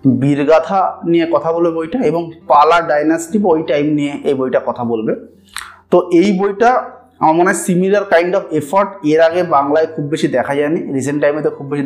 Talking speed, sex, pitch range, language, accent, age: 180 wpm, male, 130-170 Hz, Bengali, native, 30-49